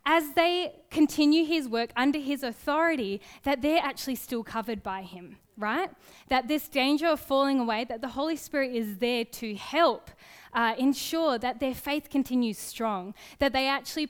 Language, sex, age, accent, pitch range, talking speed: English, female, 10-29, Australian, 230-290 Hz, 170 wpm